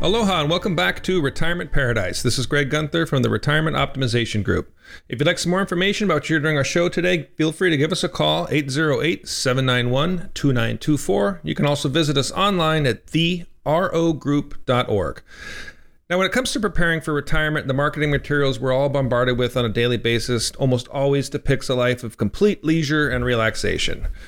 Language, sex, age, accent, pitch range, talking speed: English, male, 40-59, American, 125-155 Hz, 180 wpm